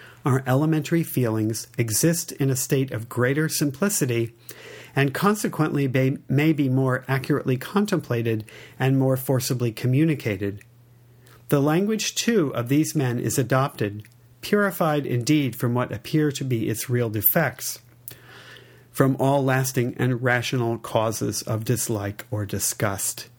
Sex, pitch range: male, 120-145 Hz